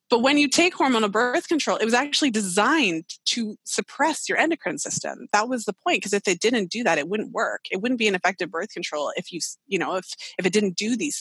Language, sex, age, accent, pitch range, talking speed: English, female, 20-39, American, 160-215 Hz, 245 wpm